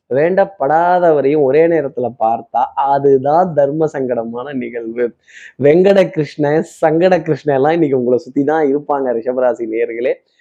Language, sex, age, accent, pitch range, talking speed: Tamil, male, 20-39, native, 140-190 Hz, 100 wpm